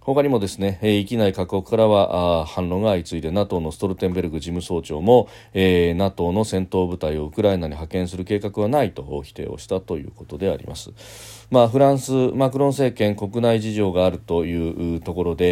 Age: 40-59